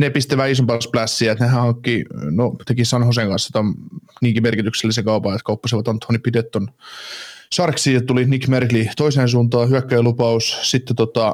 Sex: male